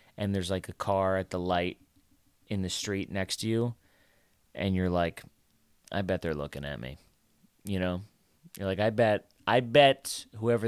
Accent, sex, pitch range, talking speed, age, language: American, male, 90-110 Hz, 180 wpm, 30-49, English